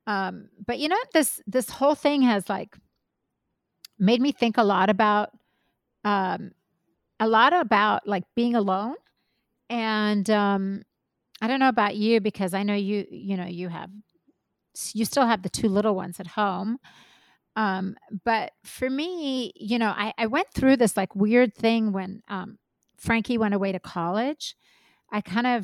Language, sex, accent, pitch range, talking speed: English, female, American, 195-230 Hz, 165 wpm